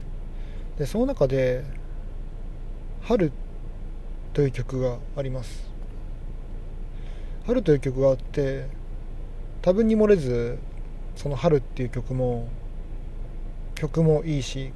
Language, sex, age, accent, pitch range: Japanese, male, 40-59, native, 115-145 Hz